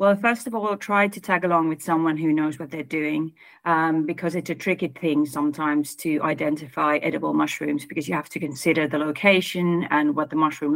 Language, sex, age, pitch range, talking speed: Finnish, female, 40-59, 155-180 Hz, 205 wpm